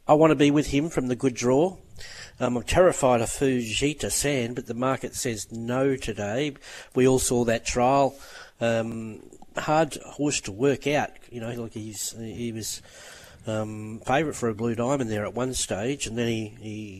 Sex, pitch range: male, 115-135 Hz